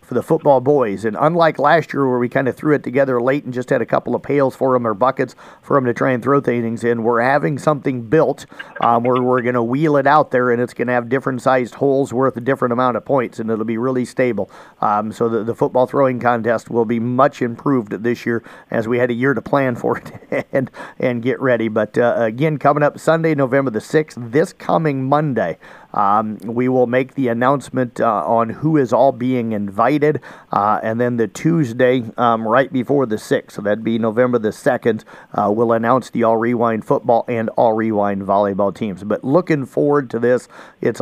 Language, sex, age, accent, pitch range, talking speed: English, male, 50-69, American, 115-135 Hz, 220 wpm